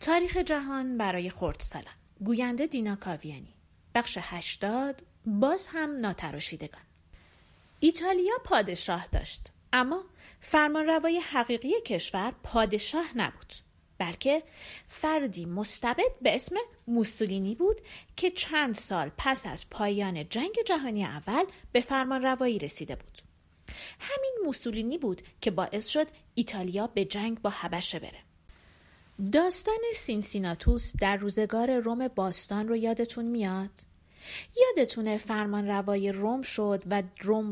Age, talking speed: 40-59, 110 wpm